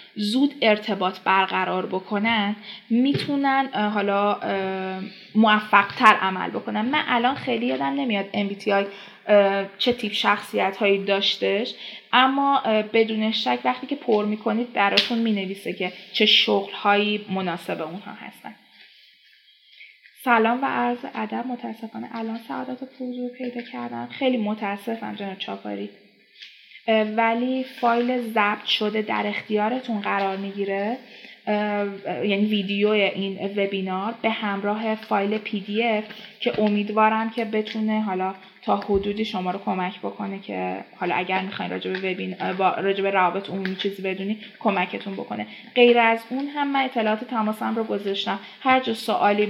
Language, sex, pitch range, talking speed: Persian, female, 195-230 Hz, 120 wpm